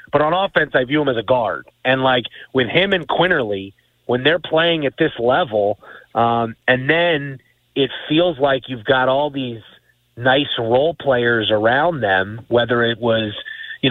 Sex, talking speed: male, 175 wpm